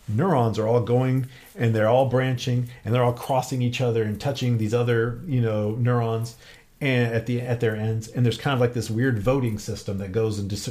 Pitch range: 105-125 Hz